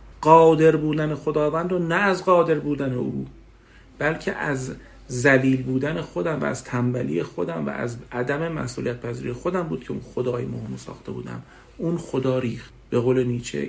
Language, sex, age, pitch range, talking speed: Persian, male, 50-69, 120-160 Hz, 160 wpm